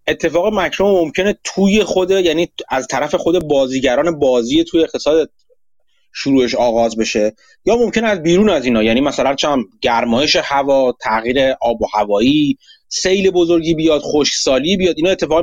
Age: 30-49